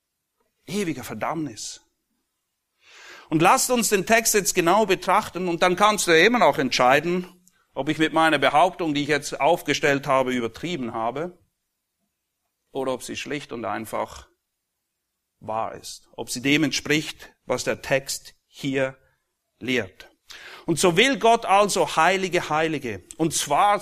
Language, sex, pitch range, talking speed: German, male, 115-175 Hz, 140 wpm